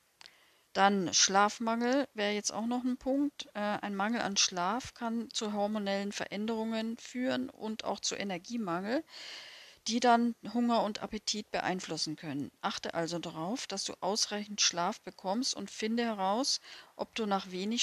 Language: German